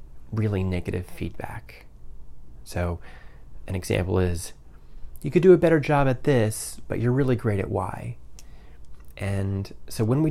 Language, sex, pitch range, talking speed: English, male, 70-110 Hz, 145 wpm